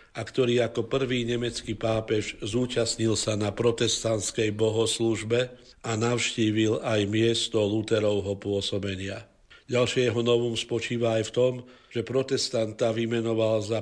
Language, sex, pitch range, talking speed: Slovak, male, 110-120 Hz, 115 wpm